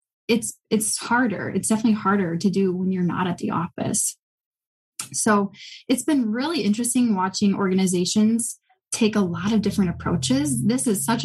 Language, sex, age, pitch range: English, female, 10-29, 185-225 Hz